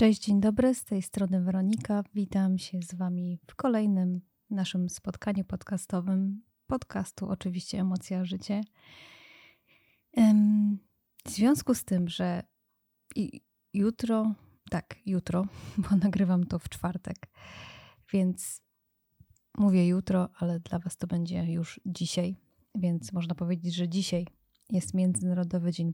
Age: 20-39